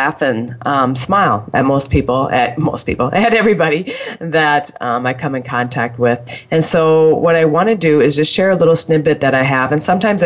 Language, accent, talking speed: English, American, 210 wpm